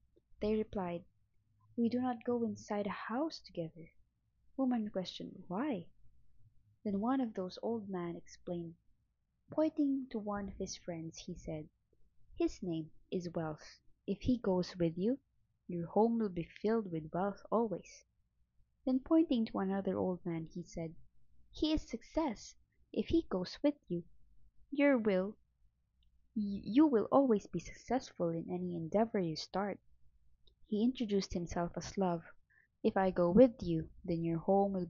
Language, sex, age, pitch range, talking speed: English, female, 20-39, 170-230 Hz, 145 wpm